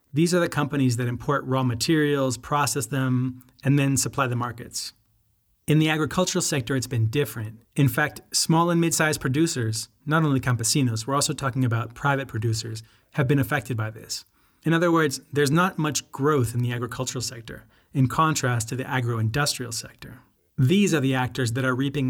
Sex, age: male, 30-49